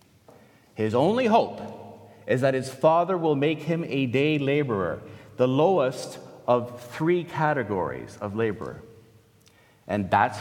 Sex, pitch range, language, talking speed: male, 105-140 Hz, English, 125 wpm